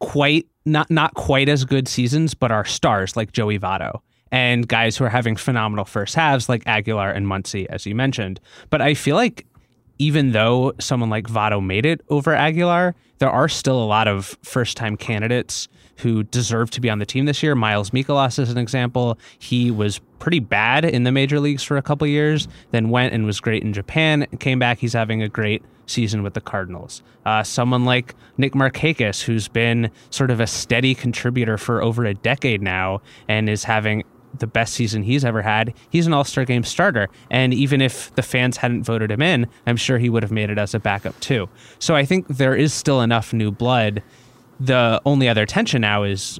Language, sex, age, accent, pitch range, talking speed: English, male, 20-39, American, 110-130 Hz, 205 wpm